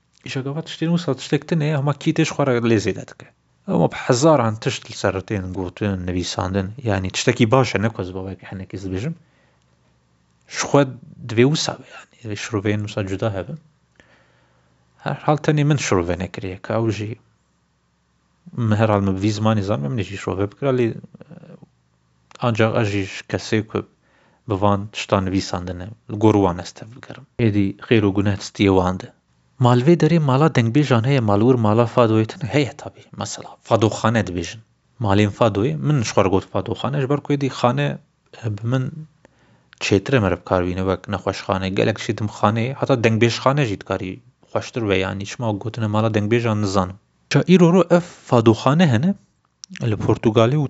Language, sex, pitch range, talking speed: Turkish, male, 95-130 Hz, 90 wpm